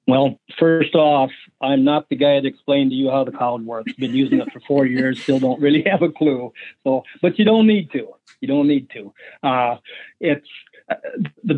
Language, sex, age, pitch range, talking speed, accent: English, male, 50-69, 130-180 Hz, 210 wpm, American